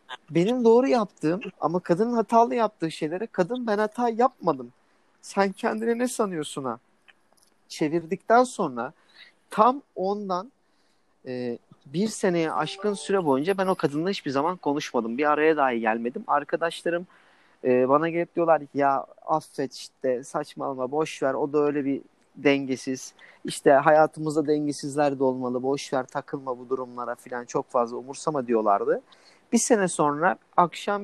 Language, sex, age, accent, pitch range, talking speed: Turkish, male, 40-59, native, 140-185 Hz, 140 wpm